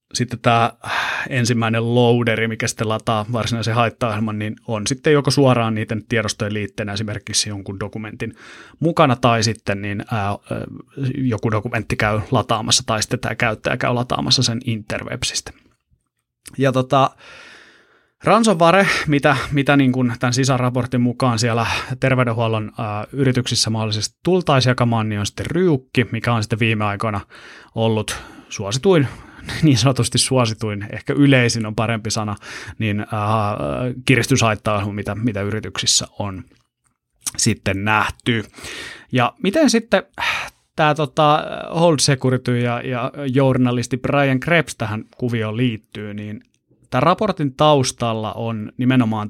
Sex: male